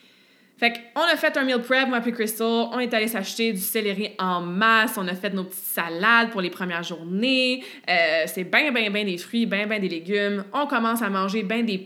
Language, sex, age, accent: French, female, 20-39, Canadian